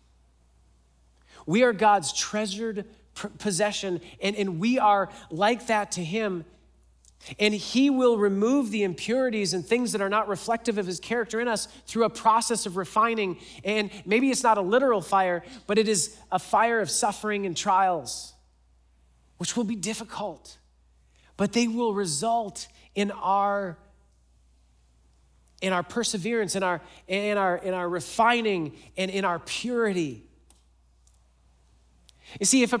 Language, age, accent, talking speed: English, 40-59, American, 145 wpm